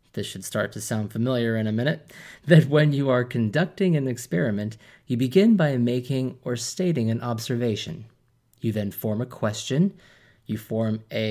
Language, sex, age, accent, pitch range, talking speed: English, male, 30-49, American, 110-145 Hz, 170 wpm